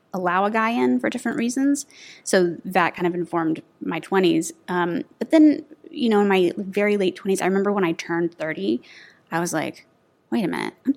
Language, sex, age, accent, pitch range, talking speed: English, female, 20-39, American, 170-205 Hz, 200 wpm